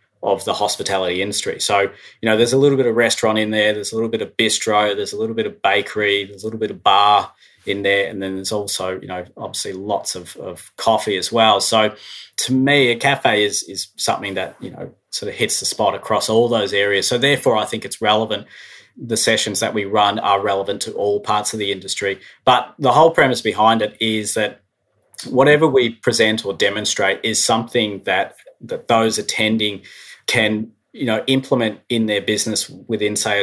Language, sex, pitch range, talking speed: English, male, 100-115 Hz, 205 wpm